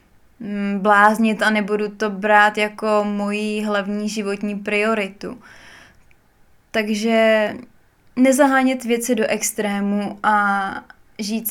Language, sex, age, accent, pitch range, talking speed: Czech, female, 20-39, native, 205-230 Hz, 90 wpm